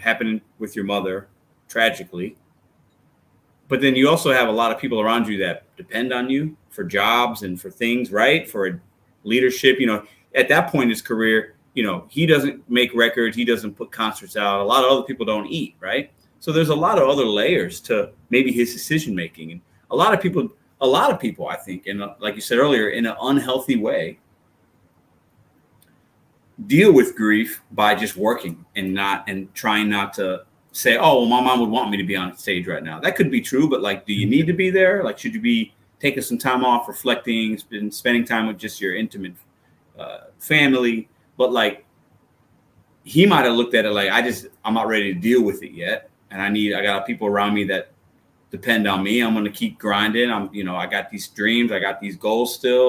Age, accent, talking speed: 30-49, American, 215 wpm